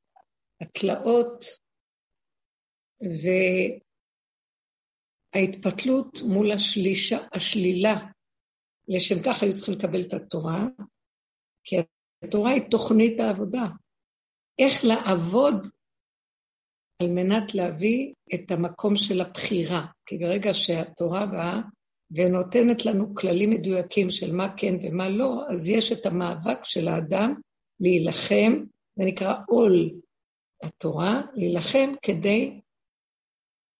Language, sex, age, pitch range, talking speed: Hebrew, female, 50-69, 175-225 Hz, 90 wpm